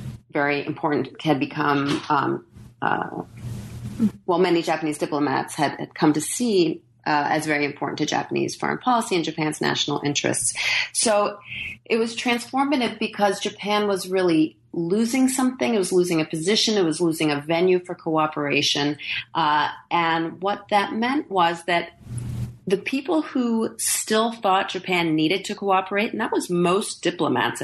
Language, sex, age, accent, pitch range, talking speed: English, female, 30-49, American, 145-195 Hz, 150 wpm